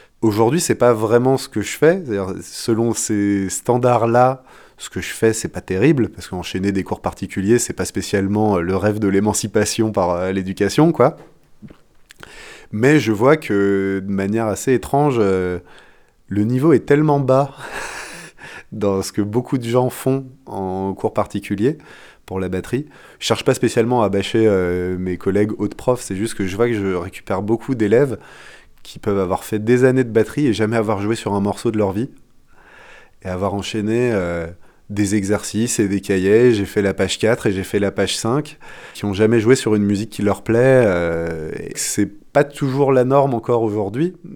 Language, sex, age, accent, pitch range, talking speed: French, male, 20-39, French, 100-120 Hz, 190 wpm